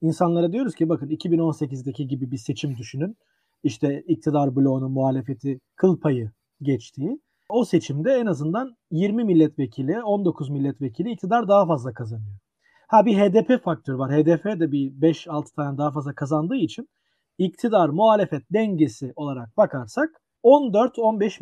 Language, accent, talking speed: Turkish, native, 135 wpm